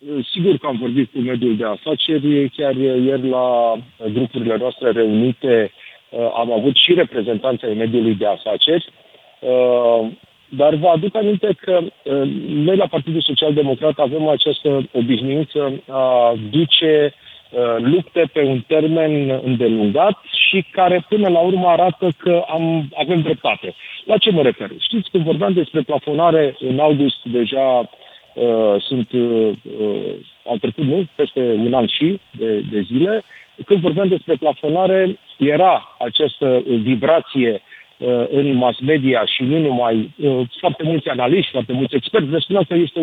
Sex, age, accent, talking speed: male, 40-59, native, 145 wpm